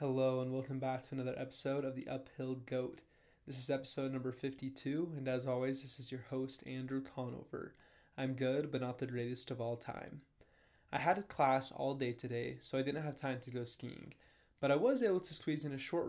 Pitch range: 125-150 Hz